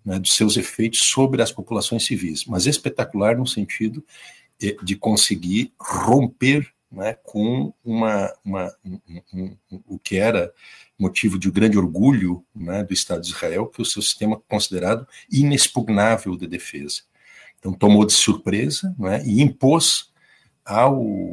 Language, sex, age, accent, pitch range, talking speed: Portuguese, male, 60-79, Brazilian, 90-115 Hz, 145 wpm